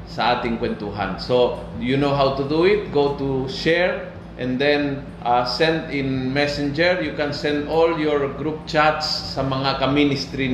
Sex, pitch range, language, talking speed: male, 120-160 Hz, Filipino, 165 wpm